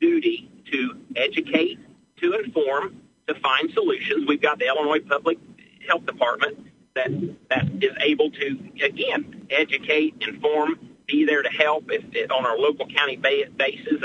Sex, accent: male, American